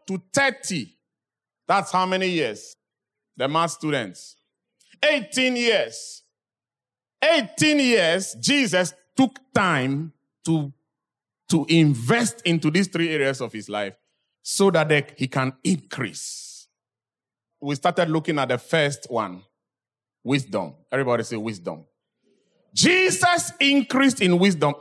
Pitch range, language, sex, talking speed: 130-195 Hz, English, male, 115 wpm